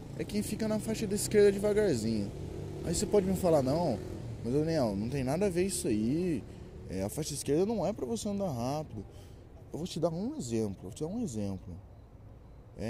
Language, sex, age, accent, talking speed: Portuguese, male, 20-39, Brazilian, 215 wpm